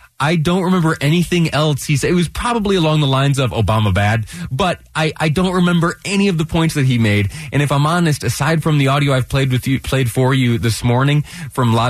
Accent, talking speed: American, 230 wpm